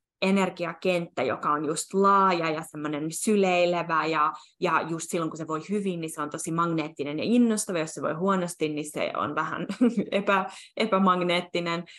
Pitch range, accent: 160-195 Hz, native